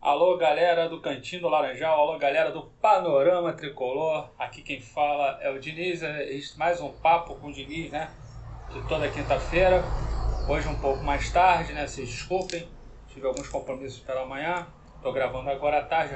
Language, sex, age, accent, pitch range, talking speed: Portuguese, male, 30-49, Brazilian, 140-185 Hz, 165 wpm